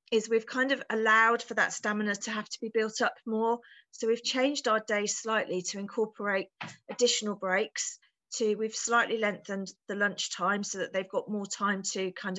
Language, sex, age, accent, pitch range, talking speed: English, female, 40-59, British, 190-235 Hz, 195 wpm